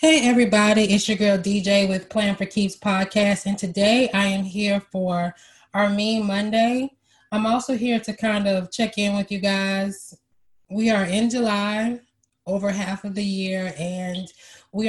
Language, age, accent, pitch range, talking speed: English, 20-39, American, 185-215 Hz, 170 wpm